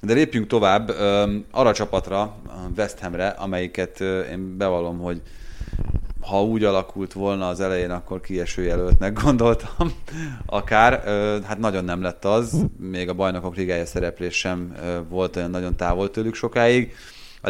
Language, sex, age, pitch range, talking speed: Hungarian, male, 30-49, 90-115 Hz, 135 wpm